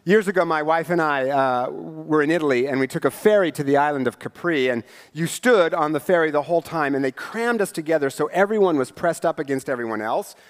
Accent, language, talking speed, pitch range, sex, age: American, English, 240 wpm, 150-195 Hz, male, 40-59